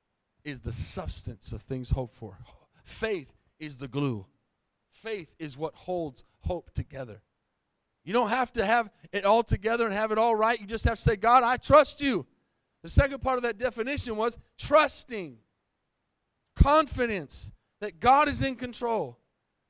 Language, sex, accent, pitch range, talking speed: English, male, American, 160-235 Hz, 160 wpm